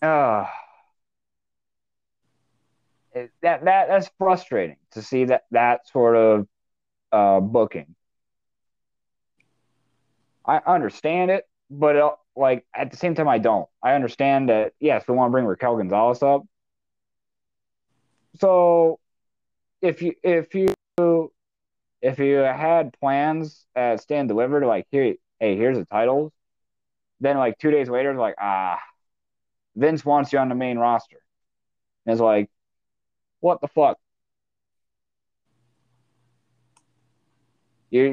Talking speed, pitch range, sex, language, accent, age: 115 wpm, 115-155 Hz, male, English, American, 30-49